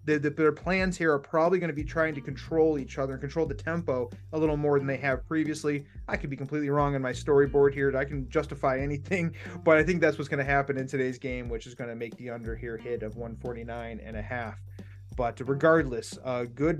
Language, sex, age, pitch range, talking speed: English, male, 20-39, 135-160 Hz, 245 wpm